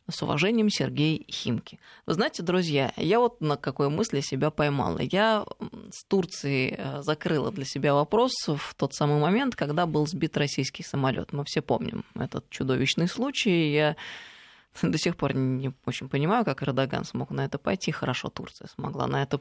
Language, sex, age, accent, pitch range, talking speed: Russian, female, 20-39, native, 140-180 Hz, 165 wpm